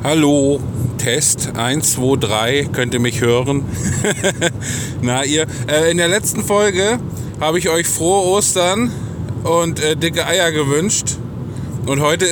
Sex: male